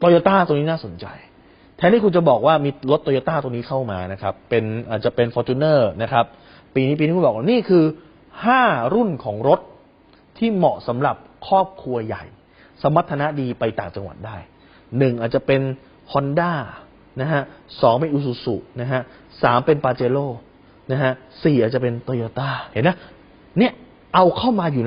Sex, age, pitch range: male, 30-49, 125-185 Hz